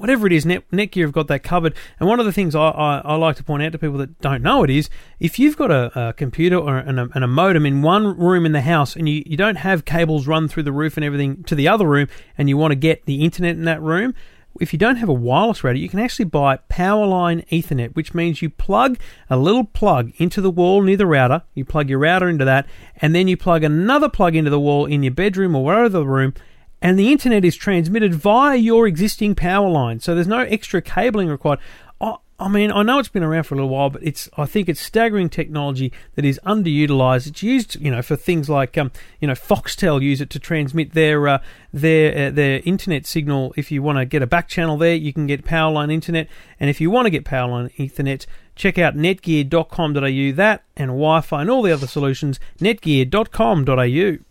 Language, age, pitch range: English, 40-59, 145-190 Hz